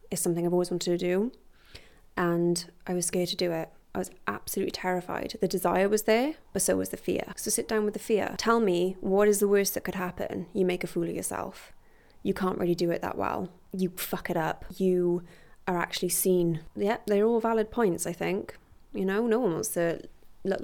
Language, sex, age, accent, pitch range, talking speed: English, female, 20-39, British, 175-200 Hz, 225 wpm